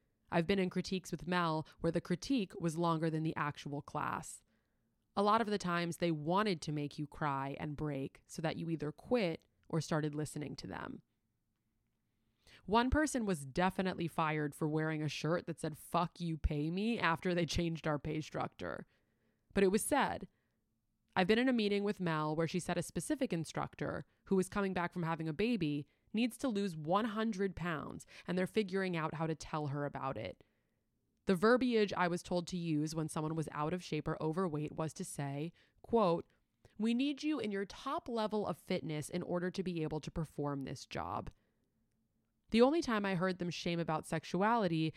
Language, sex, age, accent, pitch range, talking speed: English, female, 20-39, American, 150-190 Hz, 195 wpm